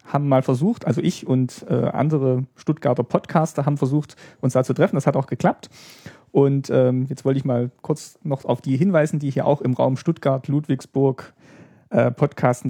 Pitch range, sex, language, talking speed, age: 125-160 Hz, male, German, 185 wpm, 40-59